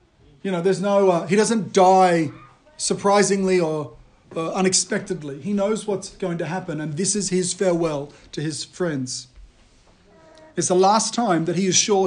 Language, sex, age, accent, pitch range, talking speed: English, male, 40-59, Australian, 170-225 Hz, 170 wpm